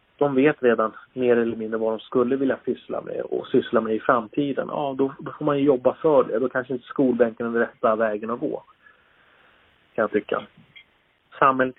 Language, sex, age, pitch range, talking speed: Swedish, male, 30-49, 115-145 Hz, 200 wpm